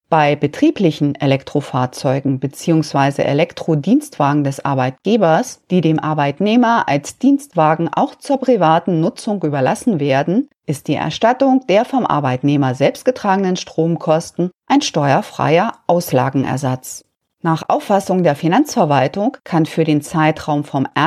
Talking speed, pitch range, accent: 110 wpm, 145-220 Hz, German